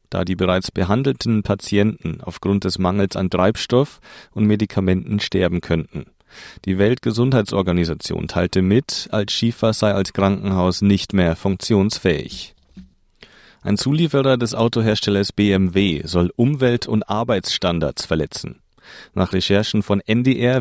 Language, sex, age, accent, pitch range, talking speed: German, male, 40-59, German, 95-115 Hz, 115 wpm